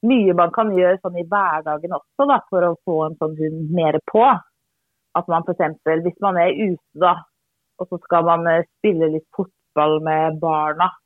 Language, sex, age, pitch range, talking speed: Swedish, female, 30-49, 160-200 Hz, 185 wpm